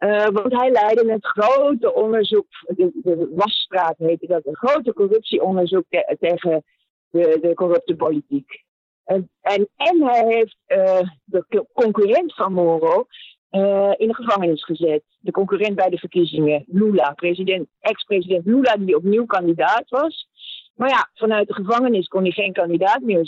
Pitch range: 185-245 Hz